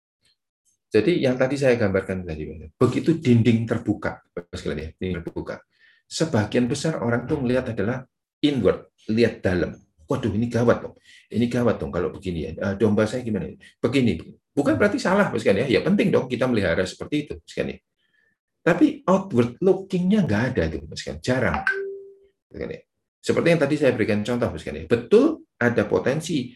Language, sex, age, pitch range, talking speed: Indonesian, male, 50-69, 105-155 Hz, 140 wpm